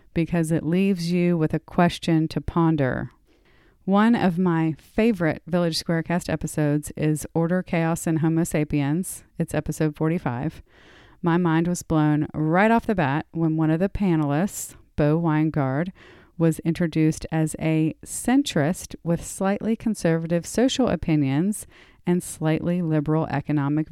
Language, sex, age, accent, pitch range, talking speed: English, female, 30-49, American, 155-195 Hz, 135 wpm